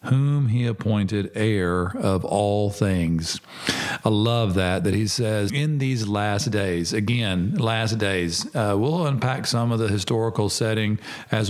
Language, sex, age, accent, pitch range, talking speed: English, male, 40-59, American, 95-115 Hz, 150 wpm